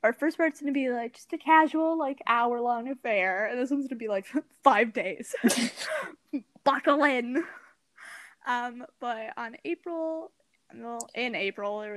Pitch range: 215-265 Hz